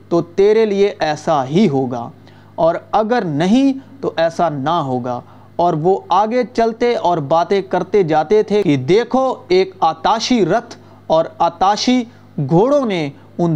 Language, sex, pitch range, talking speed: Urdu, male, 150-220 Hz, 140 wpm